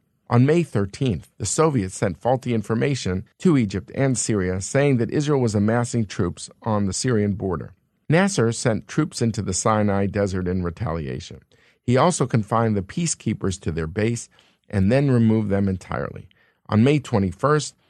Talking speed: 160 wpm